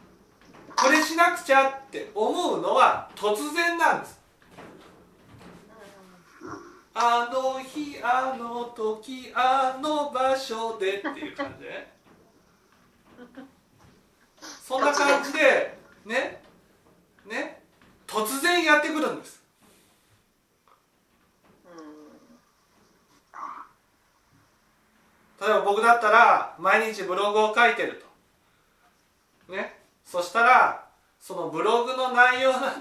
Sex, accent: male, native